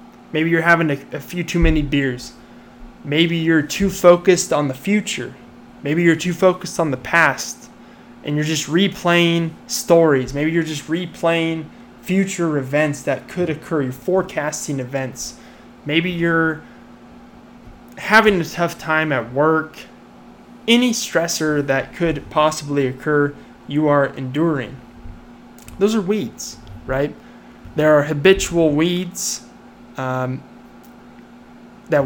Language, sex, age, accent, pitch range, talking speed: English, male, 20-39, American, 140-175 Hz, 125 wpm